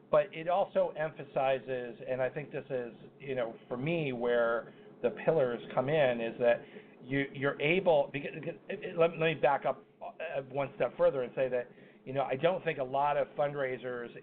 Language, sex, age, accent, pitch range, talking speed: English, male, 40-59, American, 125-140 Hz, 175 wpm